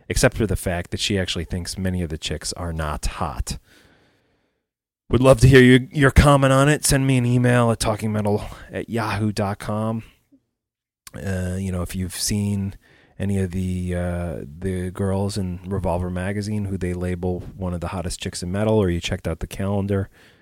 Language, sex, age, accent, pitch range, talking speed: English, male, 30-49, American, 85-110 Hz, 185 wpm